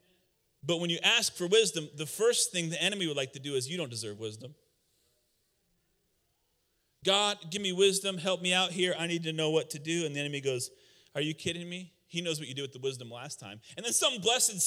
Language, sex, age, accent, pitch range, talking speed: English, male, 30-49, American, 140-180 Hz, 235 wpm